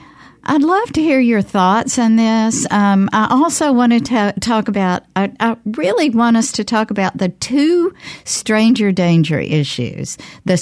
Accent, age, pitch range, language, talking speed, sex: American, 60-79, 155-225 Hz, English, 165 wpm, female